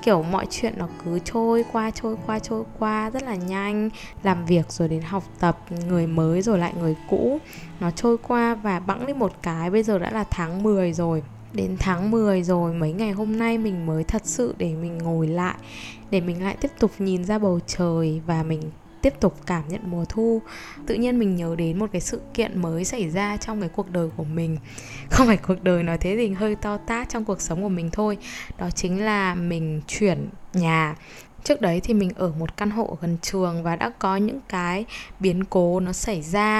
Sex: female